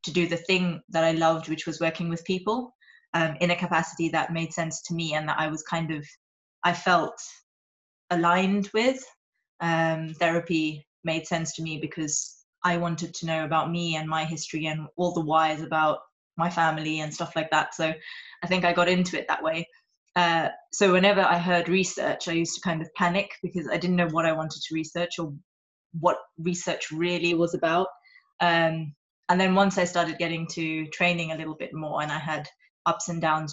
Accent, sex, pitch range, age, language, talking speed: British, female, 160-180 Hz, 20-39, English, 200 wpm